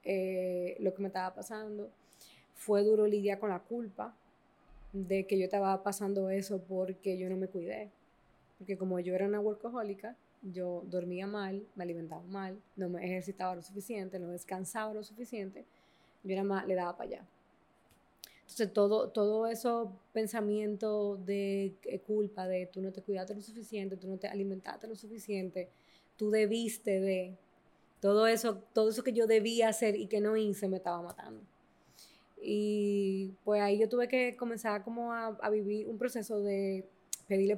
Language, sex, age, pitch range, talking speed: Spanish, female, 20-39, 190-215 Hz, 170 wpm